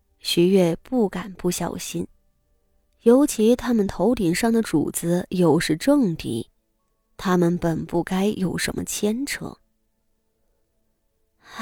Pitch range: 175-230 Hz